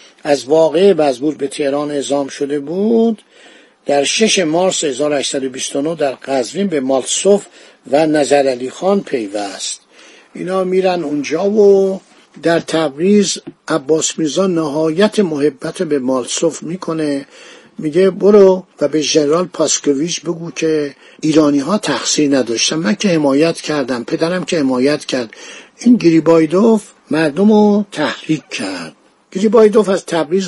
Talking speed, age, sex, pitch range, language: 120 wpm, 60-79, male, 145-195 Hz, Persian